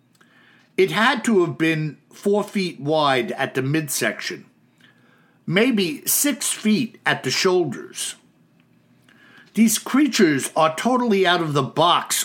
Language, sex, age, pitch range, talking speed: English, male, 60-79, 150-215 Hz, 120 wpm